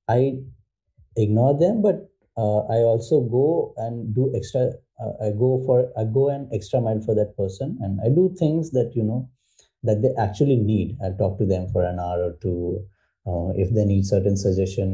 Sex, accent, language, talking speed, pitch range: male, Indian, English, 195 wpm, 100-130 Hz